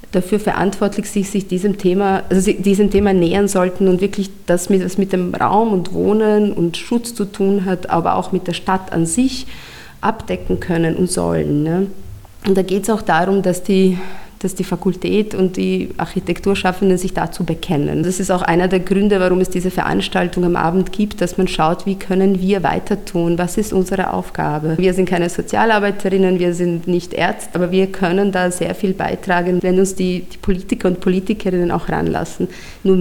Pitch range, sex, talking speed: 170-195 Hz, female, 190 wpm